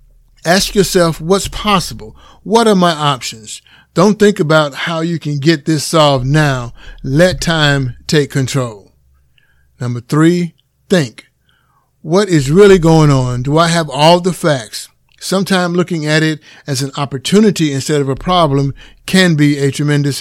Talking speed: 150 wpm